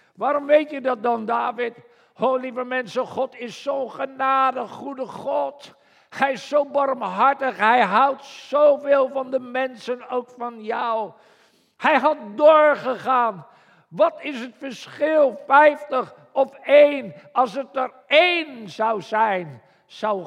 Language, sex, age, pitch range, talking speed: Dutch, male, 50-69, 215-270 Hz, 135 wpm